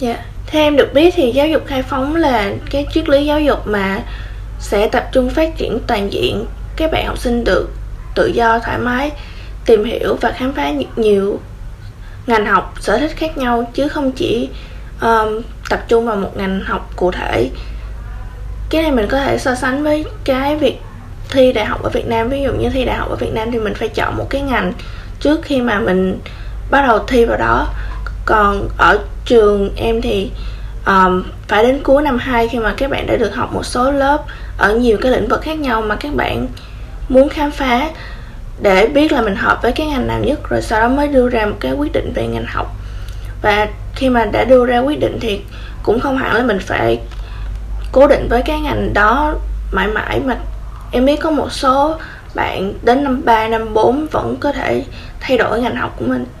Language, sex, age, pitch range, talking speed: Vietnamese, female, 20-39, 185-275 Hz, 210 wpm